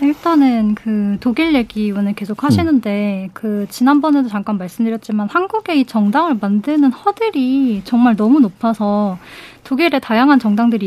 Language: Korean